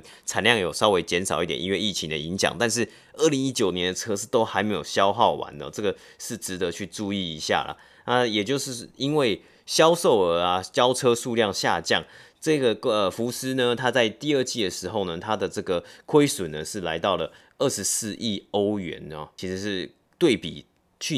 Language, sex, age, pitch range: Chinese, male, 30-49, 95-120 Hz